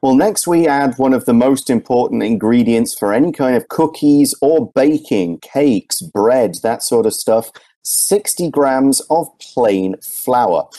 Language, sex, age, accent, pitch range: Chinese, male, 40-59, British, 105-155 Hz